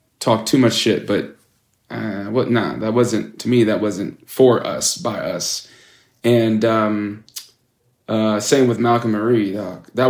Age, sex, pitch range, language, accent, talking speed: 20-39, male, 105-125 Hz, German, American, 165 wpm